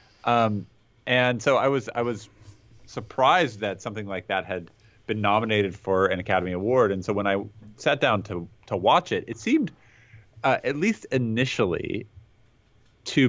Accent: American